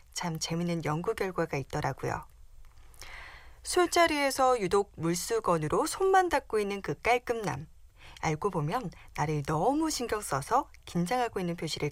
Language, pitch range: Korean, 160-250 Hz